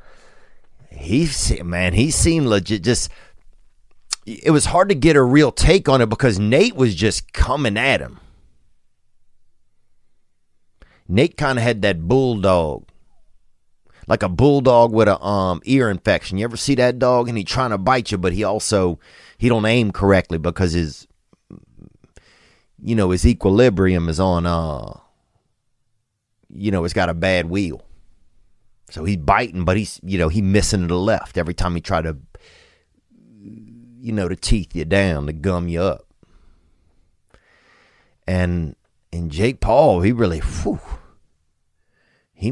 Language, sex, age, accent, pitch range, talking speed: English, male, 30-49, American, 85-115 Hz, 150 wpm